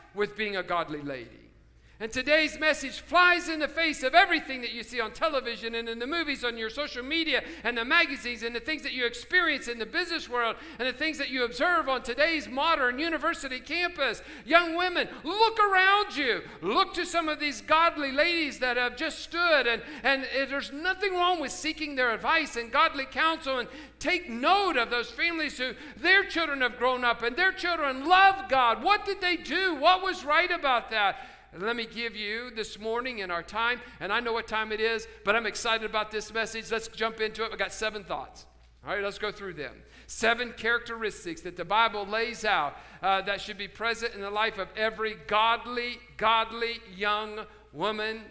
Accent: American